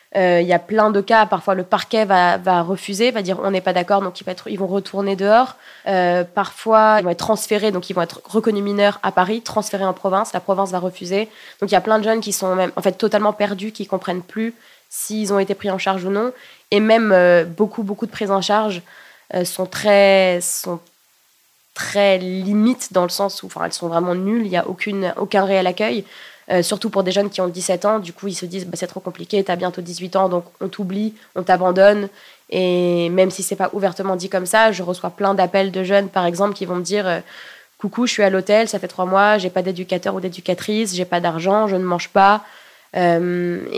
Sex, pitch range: female, 180-205 Hz